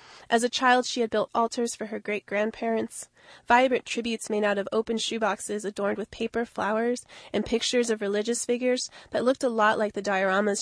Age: 20-39